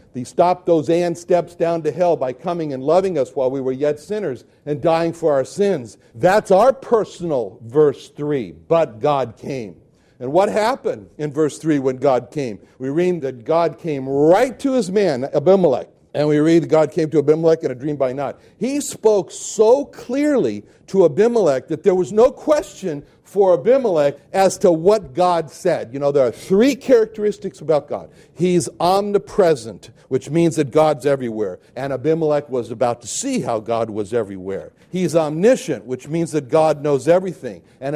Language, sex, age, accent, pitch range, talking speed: English, male, 60-79, American, 135-185 Hz, 180 wpm